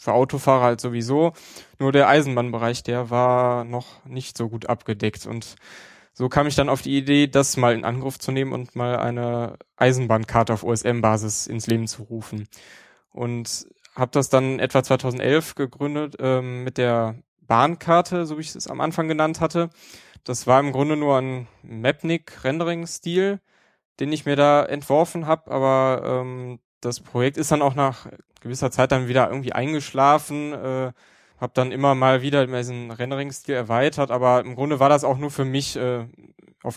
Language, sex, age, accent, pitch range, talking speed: German, male, 20-39, German, 120-140 Hz, 170 wpm